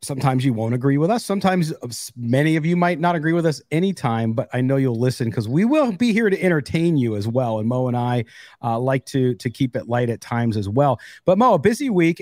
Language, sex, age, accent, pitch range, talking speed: English, male, 40-59, American, 135-180 Hz, 250 wpm